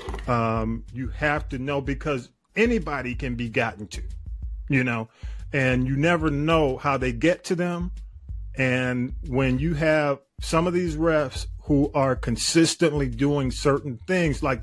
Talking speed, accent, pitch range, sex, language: 150 wpm, American, 115-155 Hz, male, English